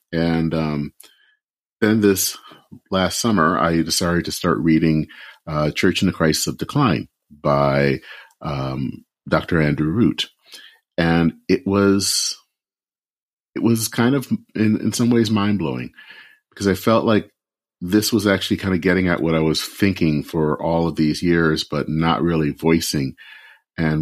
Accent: American